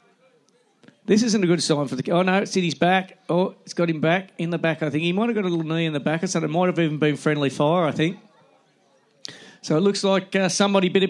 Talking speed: 265 wpm